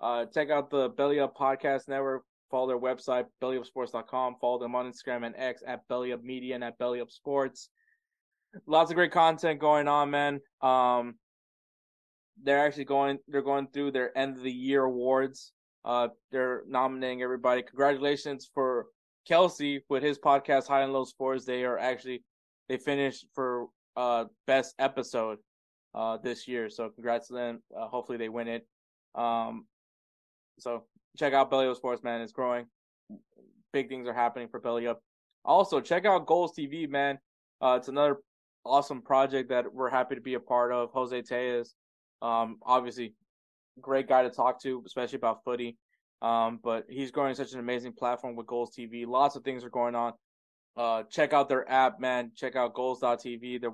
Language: English